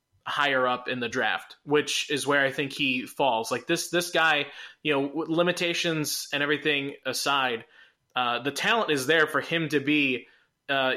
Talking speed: 175 wpm